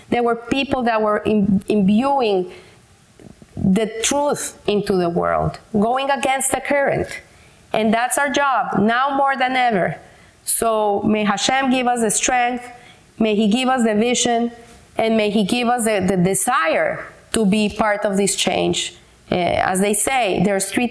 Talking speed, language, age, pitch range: 160 wpm, English, 30-49, 200-250 Hz